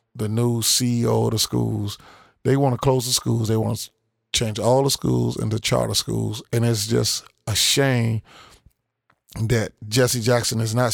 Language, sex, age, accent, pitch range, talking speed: English, male, 30-49, American, 110-135 Hz, 175 wpm